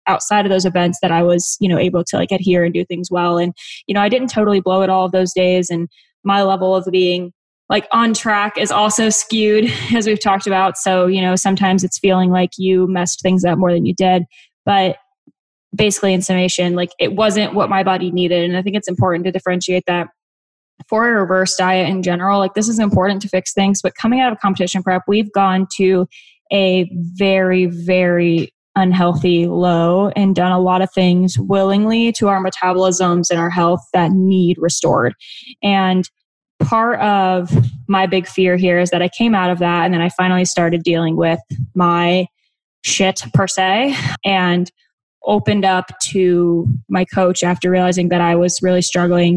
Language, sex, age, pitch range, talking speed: English, female, 10-29, 175-195 Hz, 195 wpm